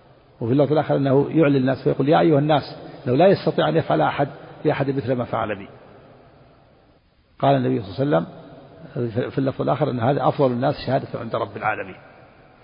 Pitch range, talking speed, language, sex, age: 115-135 Hz, 185 wpm, Arabic, male, 50-69